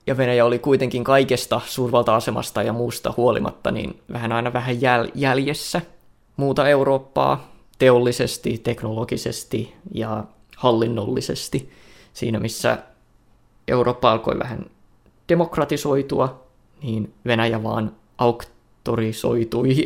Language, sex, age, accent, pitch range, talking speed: Finnish, male, 20-39, native, 115-130 Hz, 90 wpm